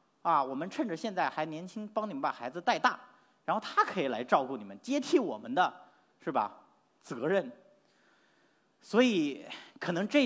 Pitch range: 160-270 Hz